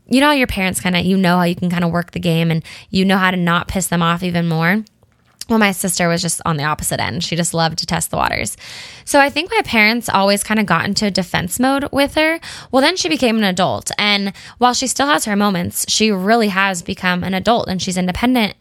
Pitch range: 175-225 Hz